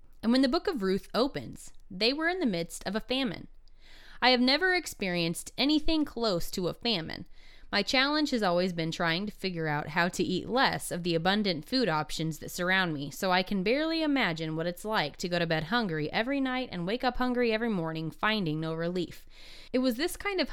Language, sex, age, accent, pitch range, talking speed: English, female, 20-39, American, 175-250 Hz, 215 wpm